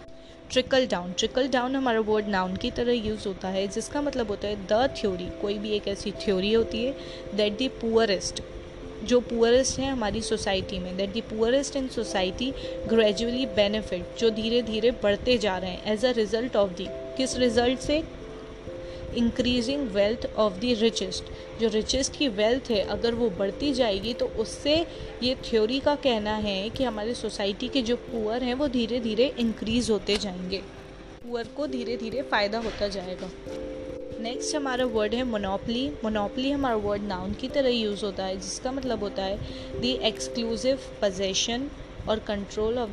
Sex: female